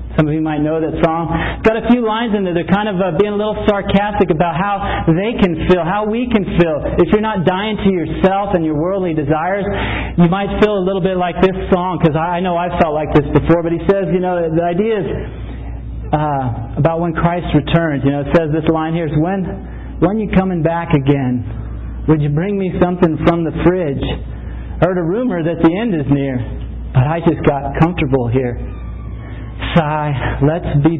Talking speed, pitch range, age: 215 wpm, 150-180 Hz, 40-59